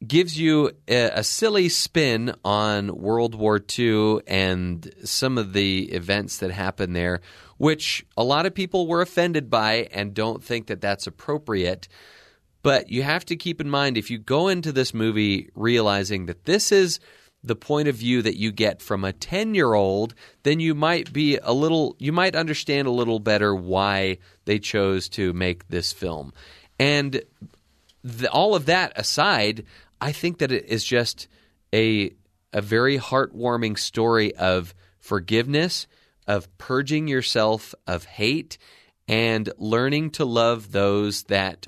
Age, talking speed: 30-49, 155 wpm